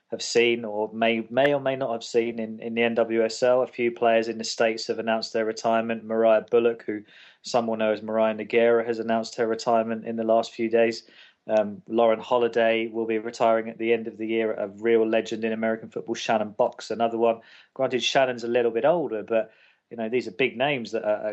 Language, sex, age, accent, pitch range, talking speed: English, male, 20-39, British, 110-120 Hz, 220 wpm